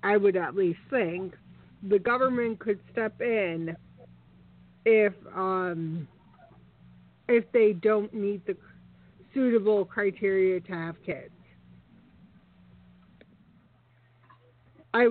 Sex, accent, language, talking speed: female, American, English, 90 wpm